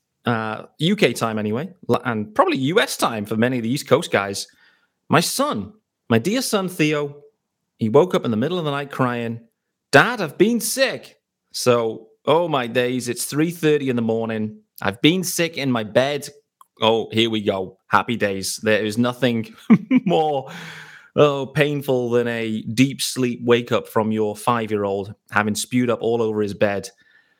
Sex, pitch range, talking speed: male, 110-135 Hz, 170 wpm